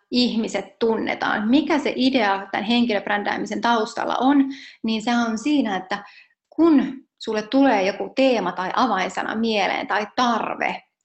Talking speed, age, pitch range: 130 wpm, 30-49, 215-265 Hz